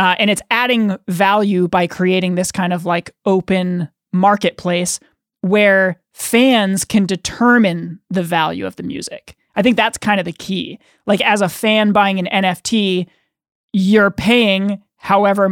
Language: English